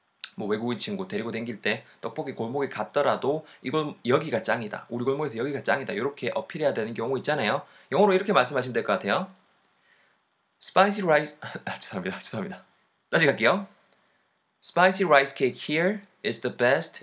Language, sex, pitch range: Korean, male, 115-190 Hz